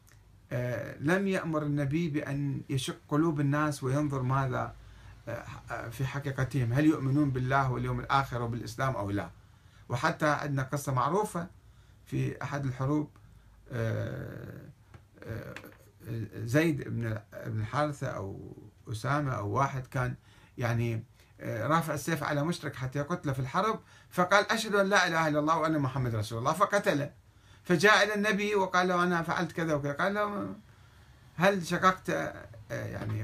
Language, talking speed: Arabic, 125 wpm